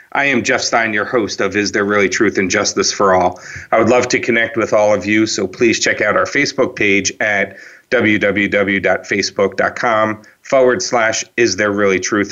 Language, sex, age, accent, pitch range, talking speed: English, male, 40-59, American, 100-110 Hz, 190 wpm